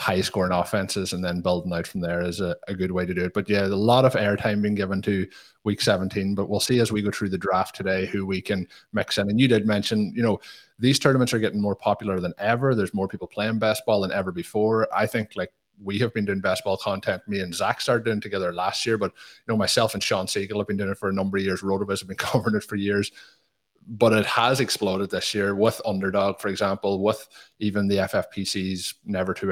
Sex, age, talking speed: male, 30-49, 250 wpm